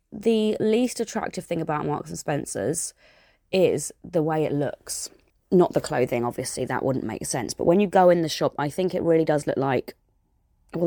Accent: British